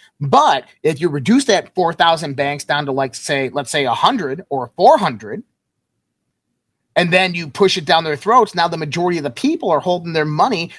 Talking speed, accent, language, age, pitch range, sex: 190 wpm, American, English, 30-49, 150-205 Hz, male